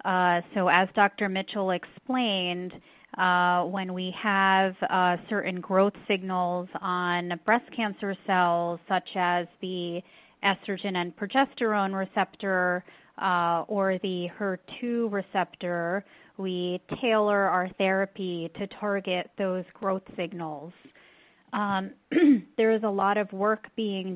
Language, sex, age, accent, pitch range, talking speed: English, female, 30-49, American, 180-205 Hz, 115 wpm